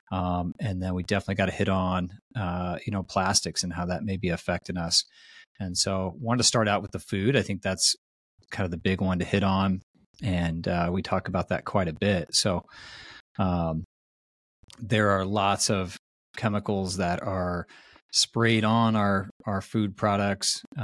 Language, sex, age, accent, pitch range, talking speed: English, male, 30-49, American, 95-105 Hz, 185 wpm